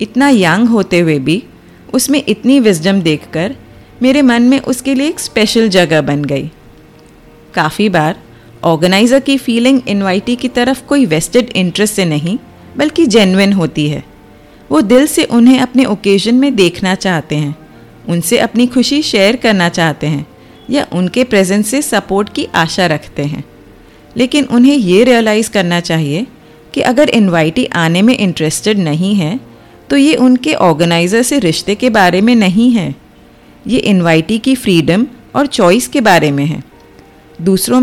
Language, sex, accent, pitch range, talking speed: Hindi, female, native, 165-250 Hz, 155 wpm